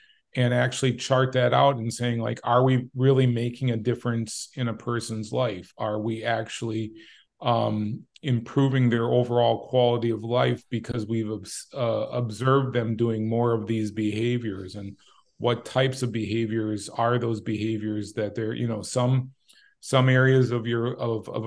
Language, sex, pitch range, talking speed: English, male, 115-130 Hz, 155 wpm